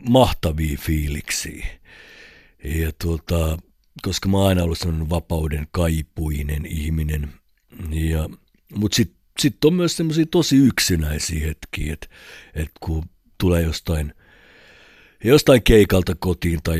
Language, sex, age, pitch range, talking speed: Finnish, male, 60-79, 80-95 Hz, 115 wpm